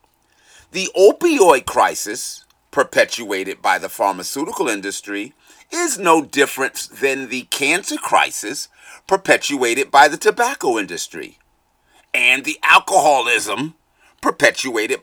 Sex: male